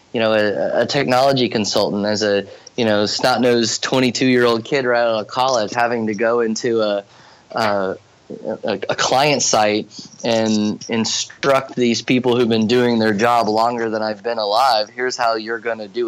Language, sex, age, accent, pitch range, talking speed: English, male, 20-39, American, 115-150 Hz, 170 wpm